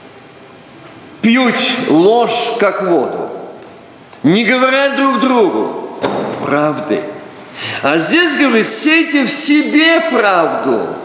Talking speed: 85 wpm